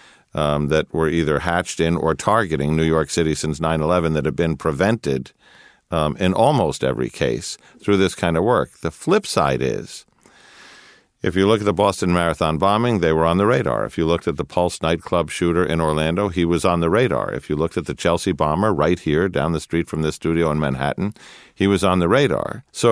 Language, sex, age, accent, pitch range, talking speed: English, male, 50-69, American, 80-100 Hz, 215 wpm